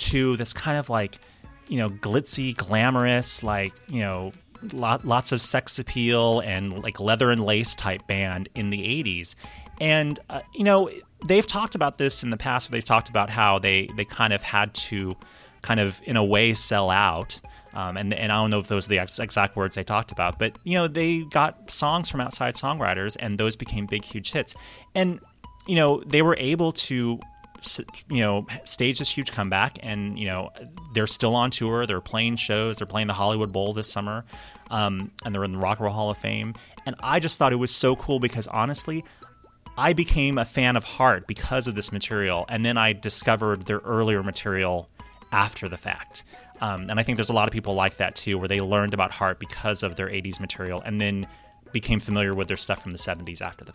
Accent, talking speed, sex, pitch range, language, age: American, 215 wpm, male, 100-125 Hz, English, 30-49